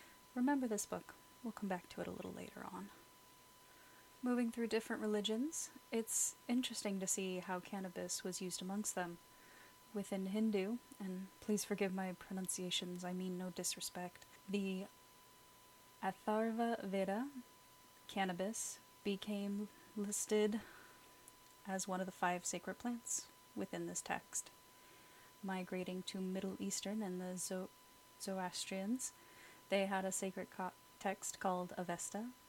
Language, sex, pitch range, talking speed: English, female, 185-235 Hz, 125 wpm